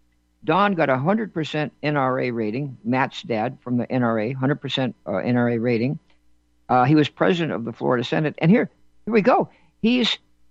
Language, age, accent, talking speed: English, 60-79, American, 175 wpm